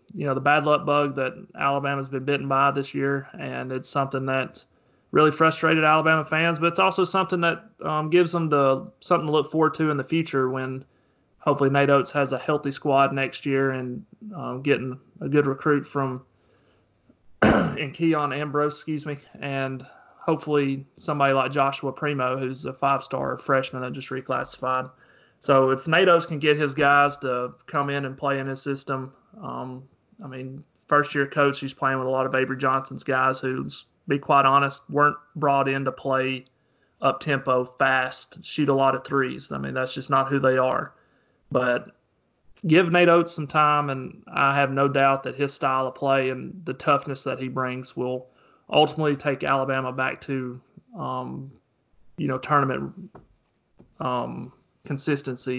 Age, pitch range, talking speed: 30-49, 130-150 Hz, 175 wpm